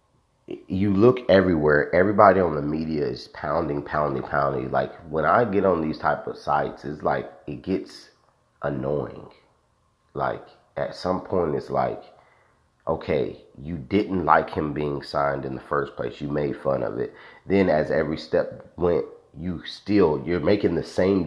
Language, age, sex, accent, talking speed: English, 30-49, male, American, 165 wpm